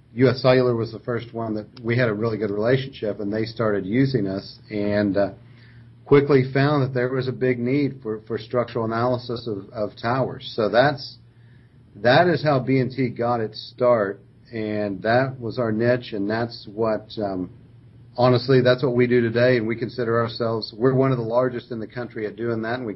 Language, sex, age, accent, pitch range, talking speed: English, male, 40-59, American, 110-125 Hz, 200 wpm